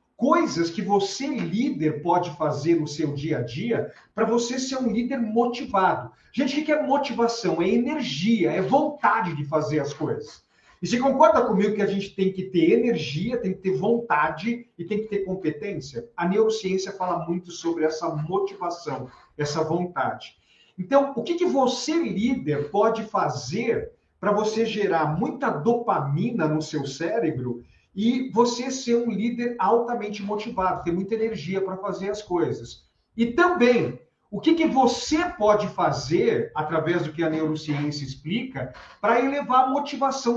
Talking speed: 160 wpm